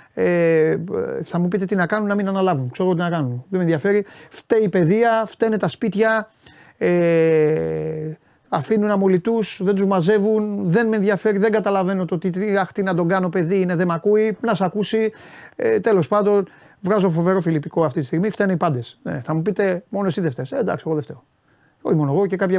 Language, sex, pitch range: Greek, male, 150-200 Hz